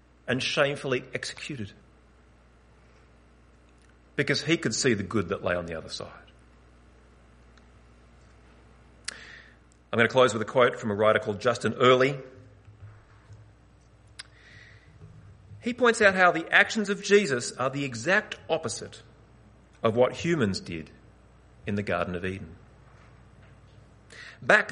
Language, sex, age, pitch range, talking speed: English, male, 40-59, 95-145 Hz, 120 wpm